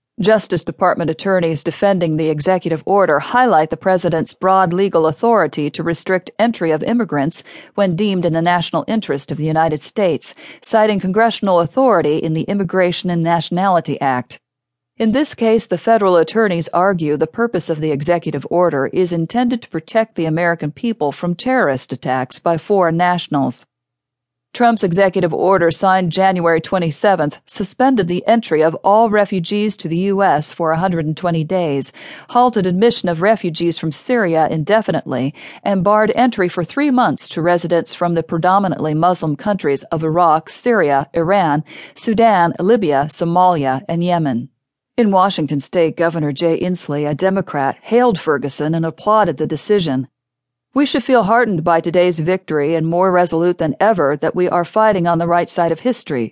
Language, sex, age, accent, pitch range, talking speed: English, female, 40-59, American, 155-195 Hz, 155 wpm